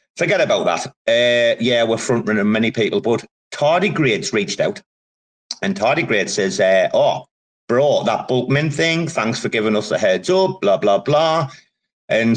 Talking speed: 165 wpm